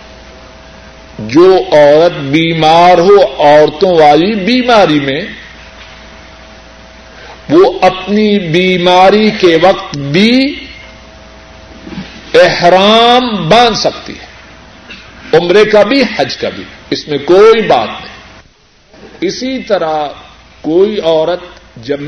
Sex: male